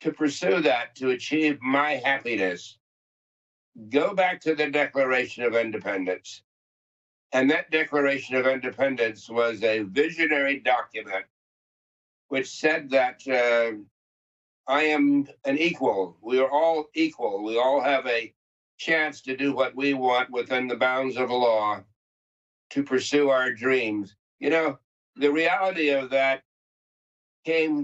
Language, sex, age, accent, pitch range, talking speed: English, male, 60-79, American, 120-145 Hz, 130 wpm